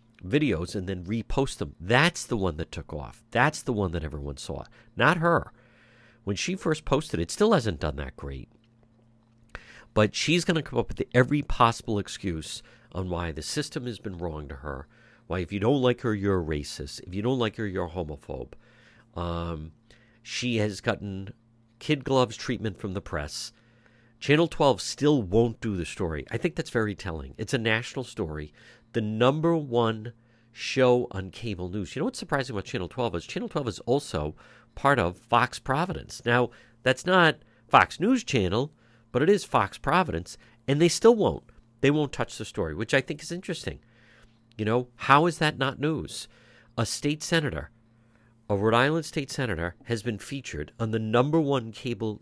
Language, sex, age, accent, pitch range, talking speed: English, male, 50-69, American, 100-130 Hz, 185 wpm